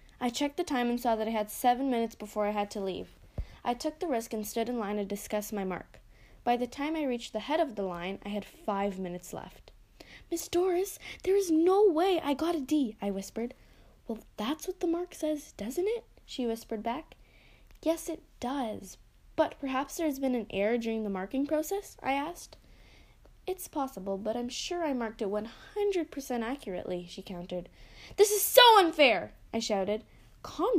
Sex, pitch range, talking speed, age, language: female, 205-300 Hz, 195 wpm, 10-29, English